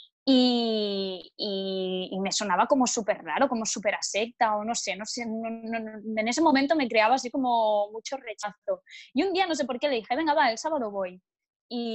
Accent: Spanish